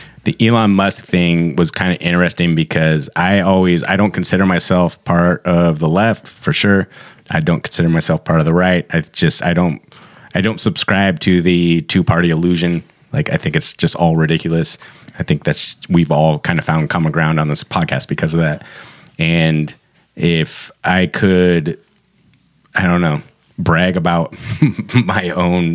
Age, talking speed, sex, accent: 30-49, 175 wpm, male, American